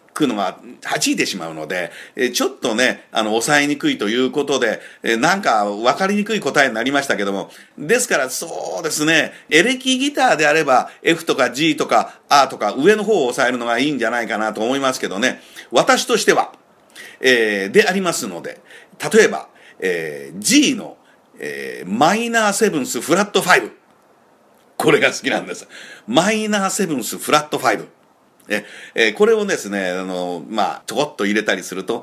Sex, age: male, 50-69